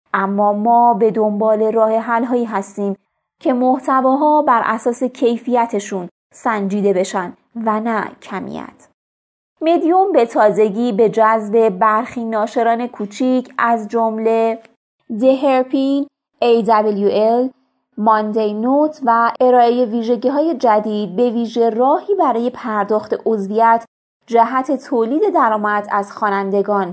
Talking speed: 105 wpm